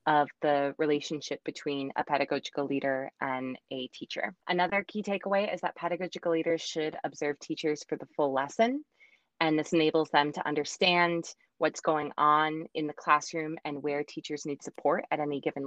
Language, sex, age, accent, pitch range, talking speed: English, female, 20-39, American, 145-175 Hz, 170 wpm